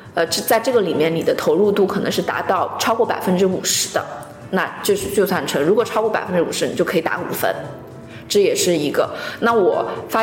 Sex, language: female, Chinese